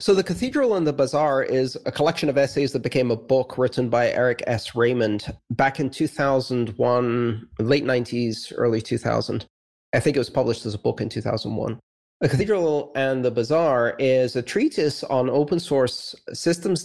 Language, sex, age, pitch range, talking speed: English, male, 30-49, 115-135 Hz, 175 wpm